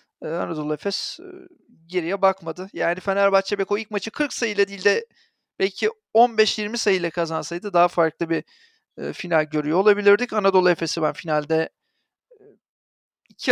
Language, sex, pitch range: Turkish, male, 160-205 Hz